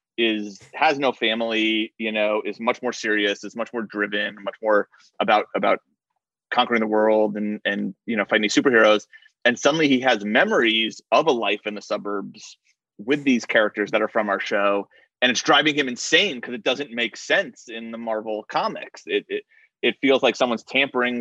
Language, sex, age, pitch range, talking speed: English, male, 30-49, 105-125 Hz, 190 wpm